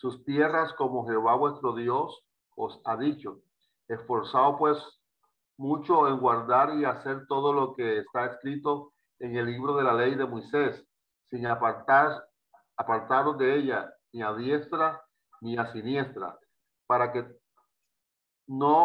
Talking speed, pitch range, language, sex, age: 135 wpm, 125-155 Hz, Spanish, male, 50-69